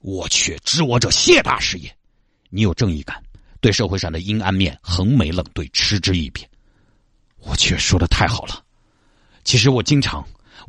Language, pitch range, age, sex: Chinese, 95-130 Hz, 50-69, male